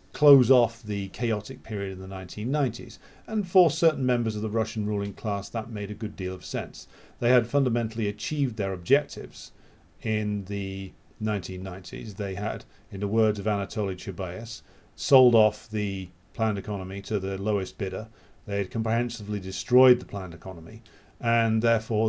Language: English